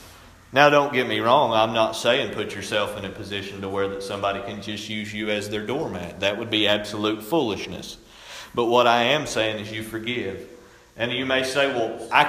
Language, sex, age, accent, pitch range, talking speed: English, male, 40-59, American, 140-190 Hz, 210 wpm